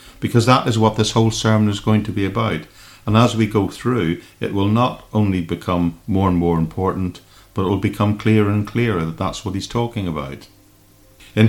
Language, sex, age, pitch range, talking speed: English, male, 50-69, 100-120 Hz, 210 wpm